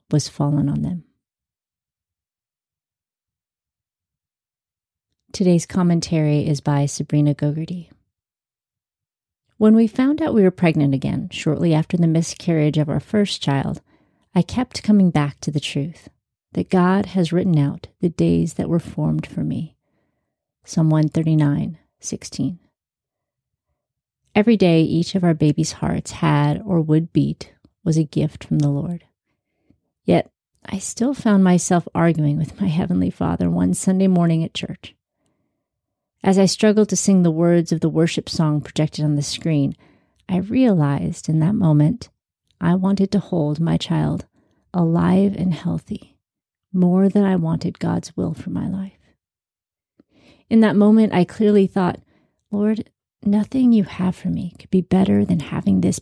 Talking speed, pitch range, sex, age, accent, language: 145 wpm, 150-190 Hz, female, 30-49, American, English